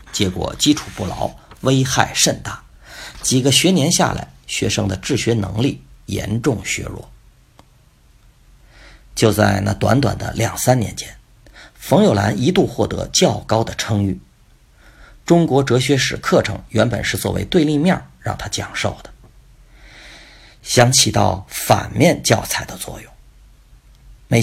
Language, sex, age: Chinese, male, 50-69